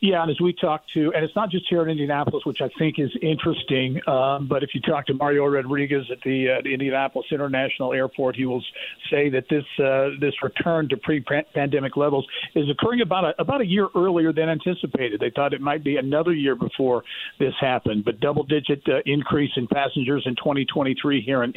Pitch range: 130-150 Hz